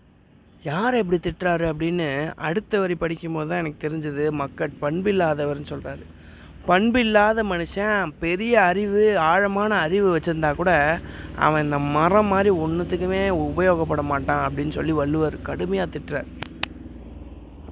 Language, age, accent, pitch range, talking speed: Tamil, 20-39, native, 150-195 Hz, 120 wpm